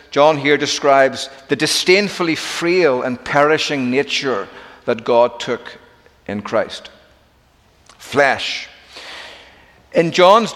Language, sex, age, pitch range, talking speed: English, male, 50-69, 135-185 Hz, 95 wpm